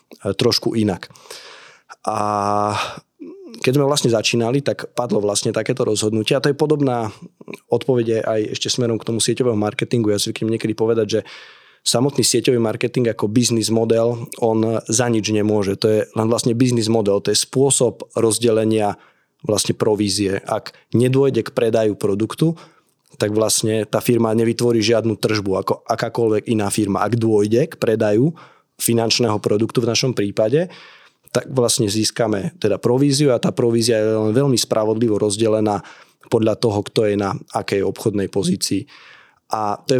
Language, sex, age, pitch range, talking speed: Slovak, male, 20-39, 110-125 Hz, 150 wpm